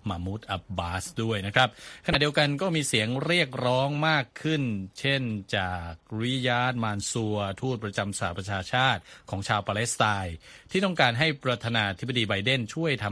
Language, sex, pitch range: Thai, male, 95-125 Hz